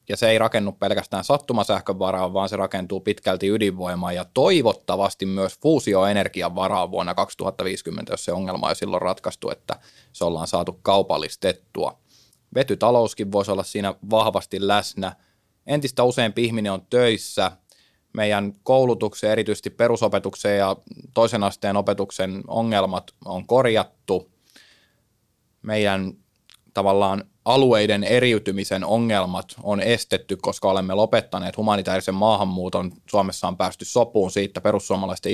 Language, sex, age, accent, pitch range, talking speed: Finnish, male, 20-39, native, 95-110 Hz, 120 wpm